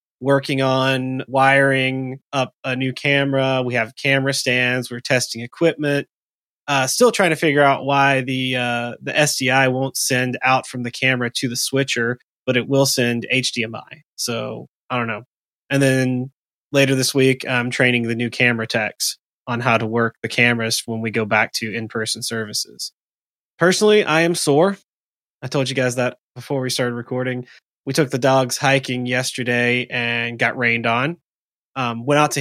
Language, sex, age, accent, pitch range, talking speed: English, male, 20-39, American, 125-145 Hz, 170 wpm